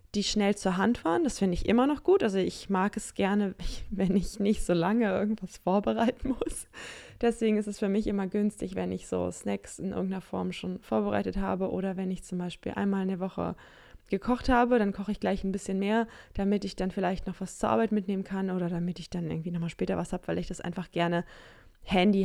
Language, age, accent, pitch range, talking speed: German, 20-39, German, 190-230 Hz, 225 wpm